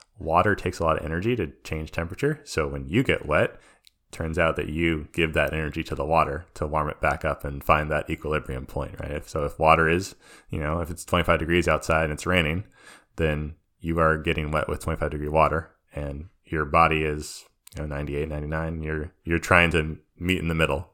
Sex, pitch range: male, 75-85 Hz